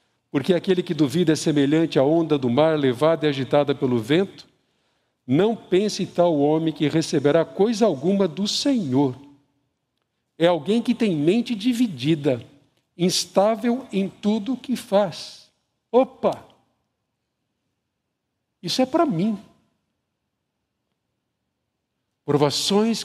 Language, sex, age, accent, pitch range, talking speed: Portuguese, male, 60-79, Brazilian, 145-195 Hz, 115 wpm